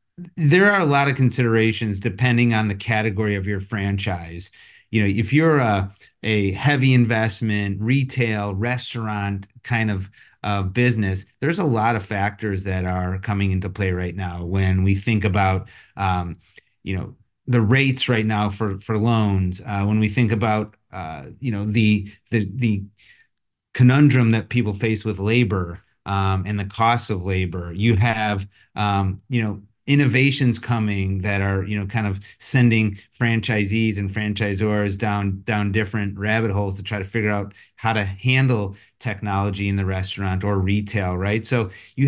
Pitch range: 100-120 Hz